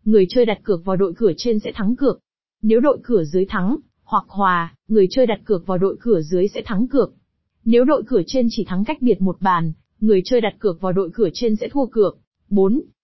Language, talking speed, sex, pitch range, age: Vietnamese, 235 wpm, female, 195-245 Hz, 20-39